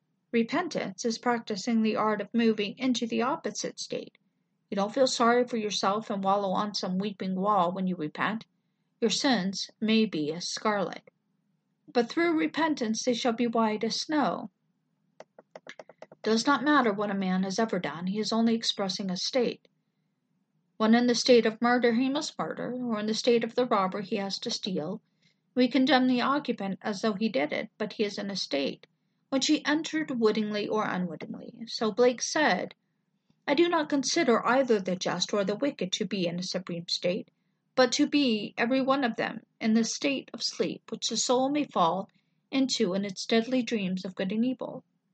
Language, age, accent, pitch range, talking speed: English, 50-69, American, 195-245 Hz, 190 wpm